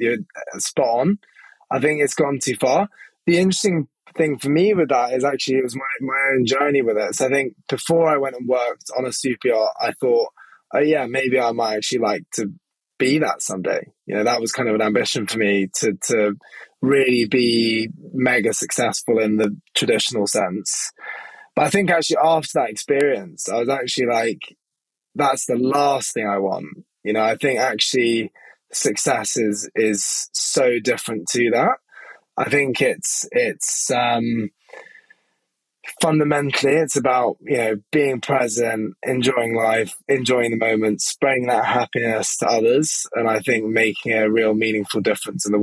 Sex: male